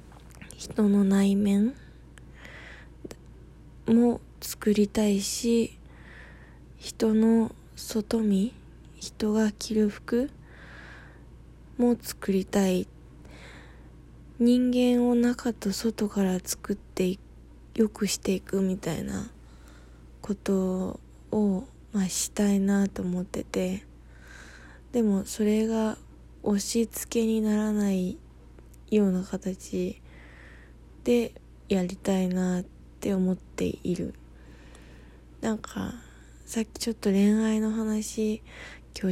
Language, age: Japanese, 20-39